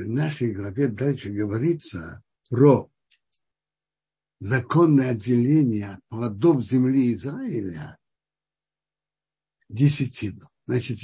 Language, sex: Russian, male